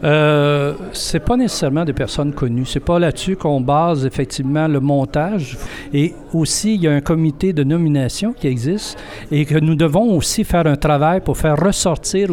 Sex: male